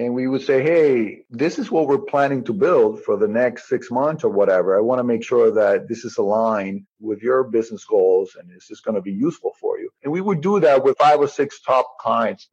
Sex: male